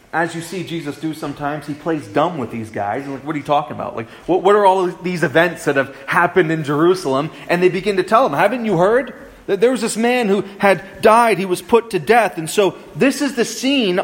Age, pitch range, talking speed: 30-49, 145-220 Hz, 250 wpm